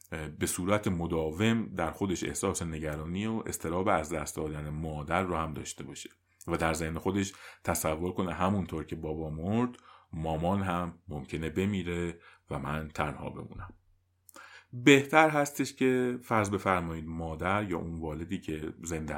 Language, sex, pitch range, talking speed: Persian, male, 80-105 Hz, 145 wpm